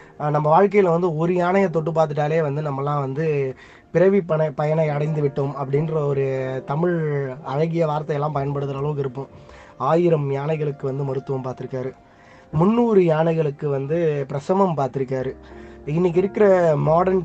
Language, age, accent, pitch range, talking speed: Tamil, 20-39, native, 140-170 Hz, 125 wpm